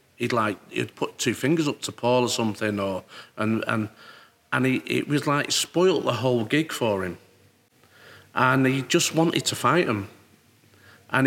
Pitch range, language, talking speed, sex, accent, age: 120-170 Hz, English, 175 wpm, male, British, 40-59